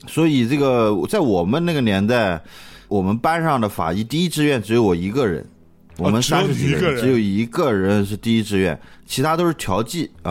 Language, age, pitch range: Chinese, 20-39, 95-140 Hz